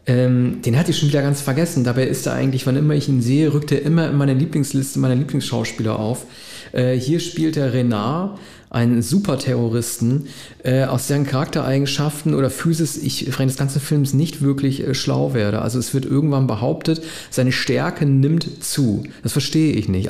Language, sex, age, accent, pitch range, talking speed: German, male, 40-59, German, 125-150 Hz, 180 wpm